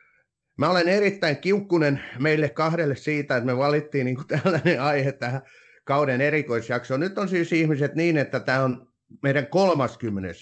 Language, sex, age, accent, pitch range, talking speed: Finnish, male, 30-49, native, 115-145 Hz, 150 wpm